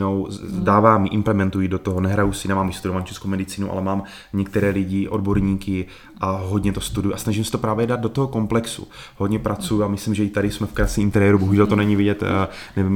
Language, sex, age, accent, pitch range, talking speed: Czech, male, 20-39, native, 95-110 Hz, 205 wpm